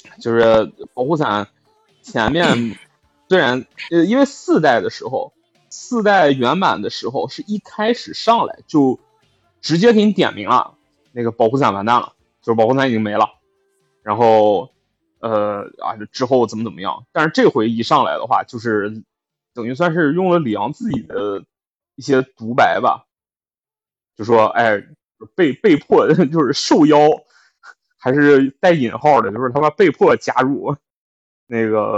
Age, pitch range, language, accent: 20-39, 110-145 Hz, Chinese, native